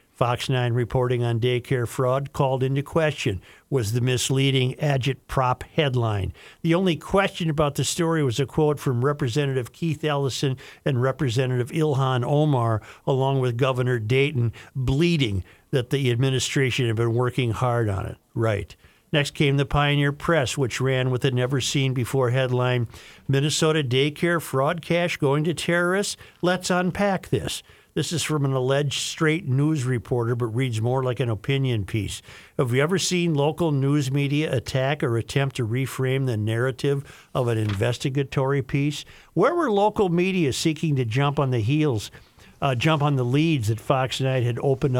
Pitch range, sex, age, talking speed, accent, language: 125-150 Hz, male, 50-69, 160 wpm, American, English